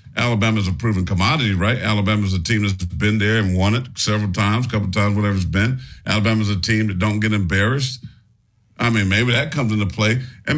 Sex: male